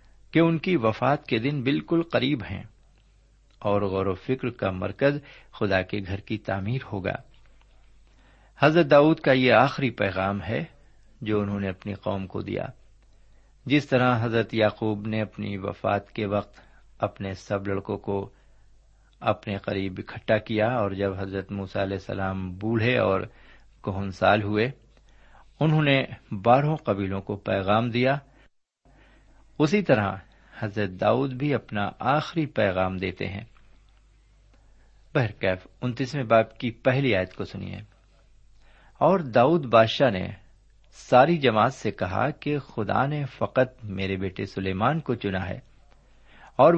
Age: 60-79